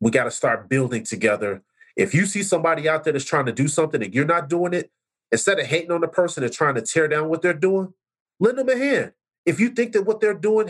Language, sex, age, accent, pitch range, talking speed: English, male, 30-49, American, 150-225 Hz, 265 wpm